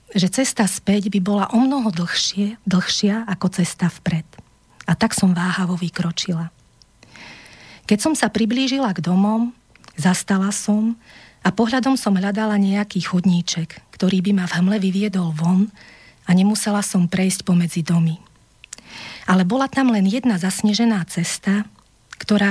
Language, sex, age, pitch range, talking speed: Slovak, female, 40-59, 170-215 Hz, 140 wpm